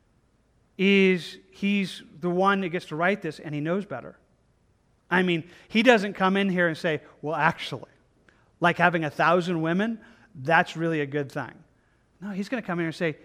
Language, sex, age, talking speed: English, male, 40-59, 190 wpm